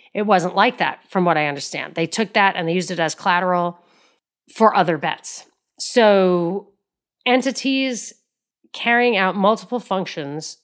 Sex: female